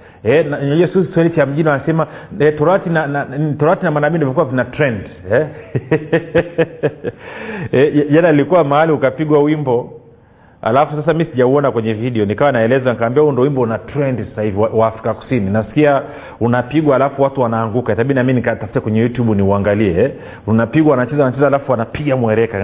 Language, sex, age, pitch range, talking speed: Swahili, male, 40-59, 120-160 Hz, 150 wpm